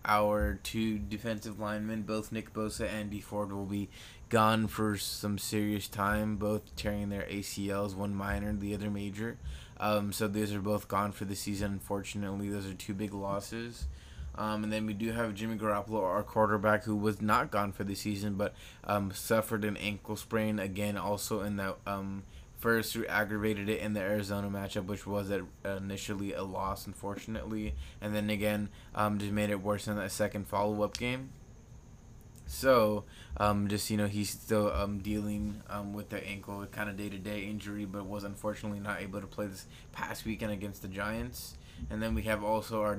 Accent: American